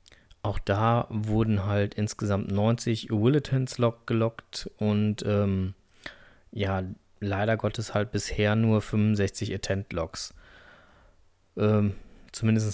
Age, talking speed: 20-39, 95 wpm